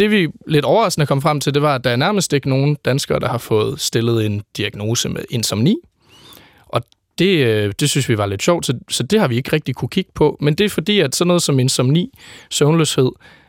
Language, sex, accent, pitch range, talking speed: Danish, male, native, 120-155 Hz, 225 wpm